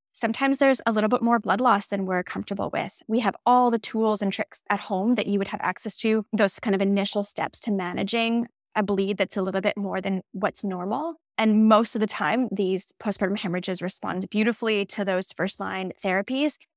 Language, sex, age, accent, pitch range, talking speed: English, female, 10-29, American, 195-230 Hz, 210 wpm